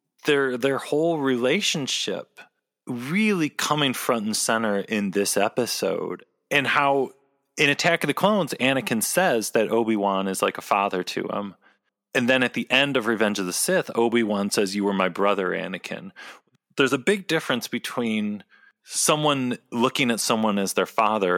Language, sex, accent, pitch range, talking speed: English, male, American, 100-150 Hz, 165 wpm